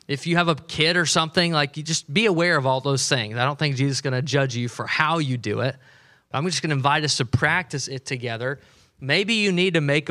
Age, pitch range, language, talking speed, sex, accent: 20-39, 135-165 Hz, English, 255 wpm, male, American